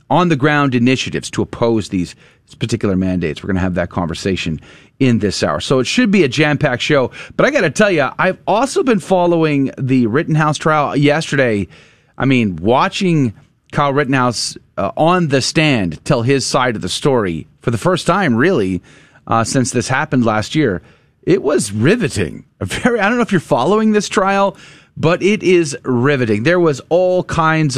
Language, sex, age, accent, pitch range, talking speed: English, male, 30-49, American, 110-155 Hz, 180 wpm